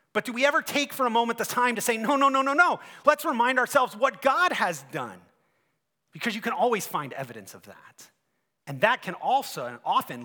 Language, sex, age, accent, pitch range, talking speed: English, male, 30-49, American, 160-245 Hz, 225 wpm